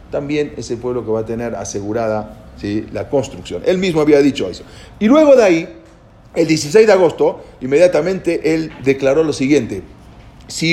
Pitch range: 125-200 Hz